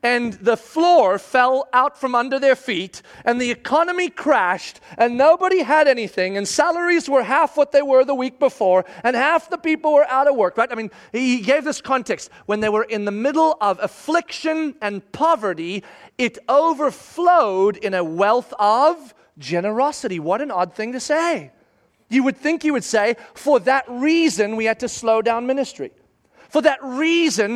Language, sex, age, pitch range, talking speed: English, male, 30-49, 200-280 Hz, 180 wpm